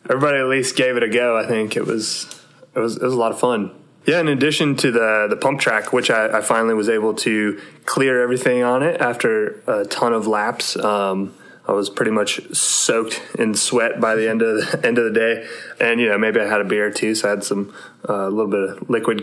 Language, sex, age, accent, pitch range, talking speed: English, male, 20-39, American, 100-120 Hz, 245 wpm